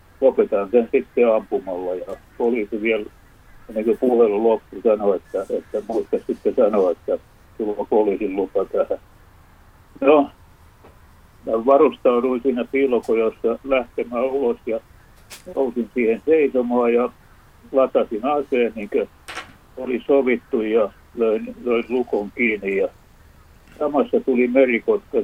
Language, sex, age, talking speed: Finnish, male, 60-79, 115 wpm